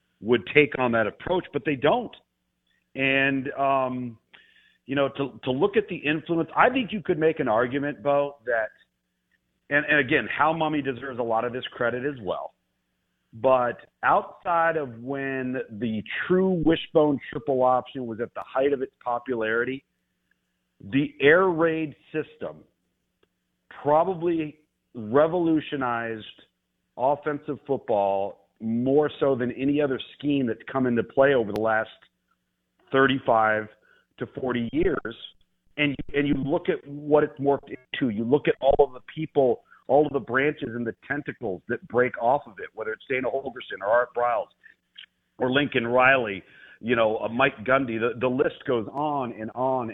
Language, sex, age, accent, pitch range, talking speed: English, male, 50-69, American, 120-150 Hz, 155 wpm